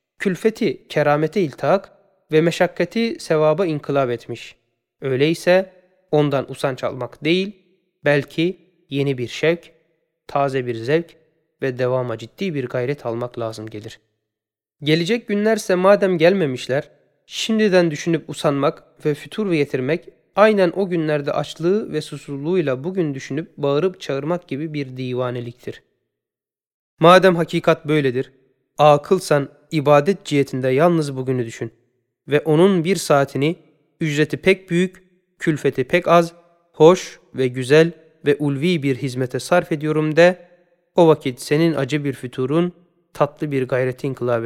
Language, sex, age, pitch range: Turkish, male, 30-49, 130-175 Hz